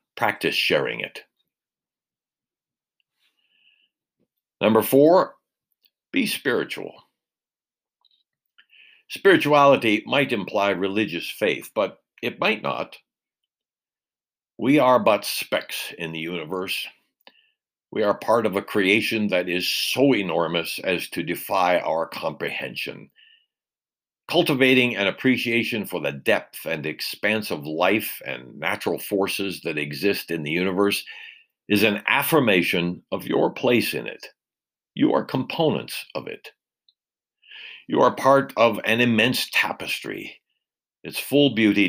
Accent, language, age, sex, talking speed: American, English, 60-79, male, 115 wpm